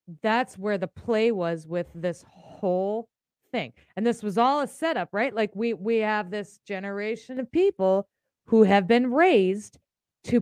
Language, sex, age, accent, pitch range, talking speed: English, female, 30-49, American, 185-235 Hz, 165 wpm